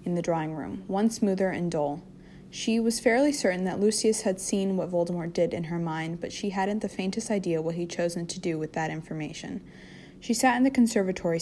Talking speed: 215 wpm